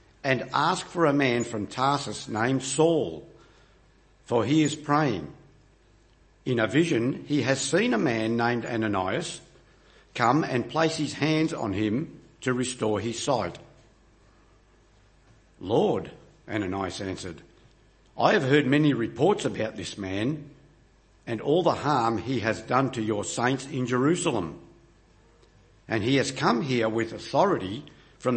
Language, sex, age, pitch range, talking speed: English, male, 60-79, 105-135 Hz, 140 wpm